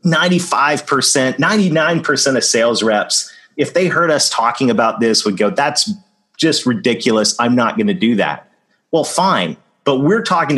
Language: English